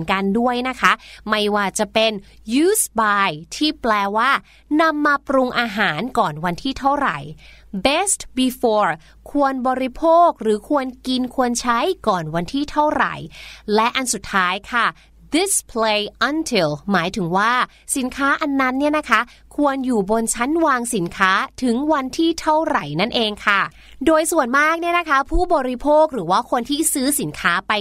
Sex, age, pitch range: female, 30-49, 215-295 Hz